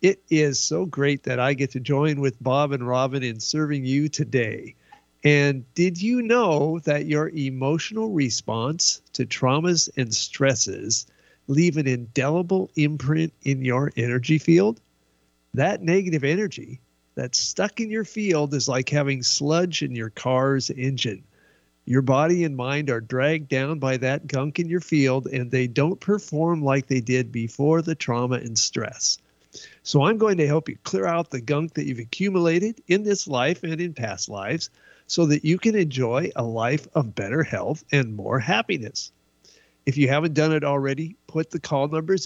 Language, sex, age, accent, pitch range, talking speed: English, male, 50-69, American, 125-160 Hz, 170 wpm